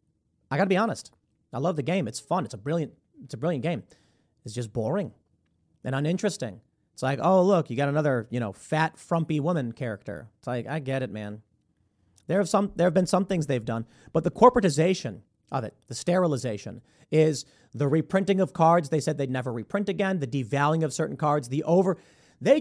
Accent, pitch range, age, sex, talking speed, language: American, 130-200 Hz, 30-49, male, 205 wpm, English